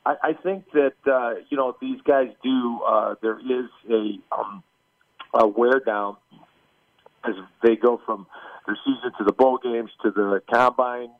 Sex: male